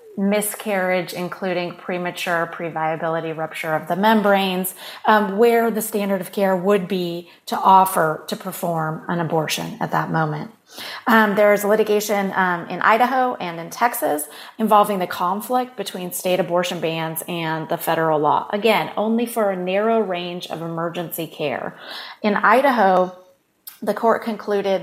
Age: 30-49